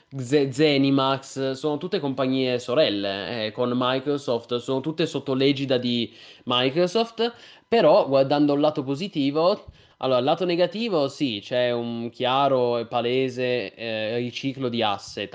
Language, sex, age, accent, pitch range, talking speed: Italian, male, 20-39, native, 120-145 Hz, 135 wpm